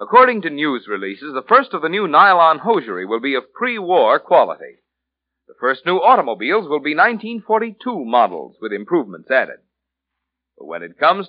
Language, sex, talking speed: English, male, 165 wpm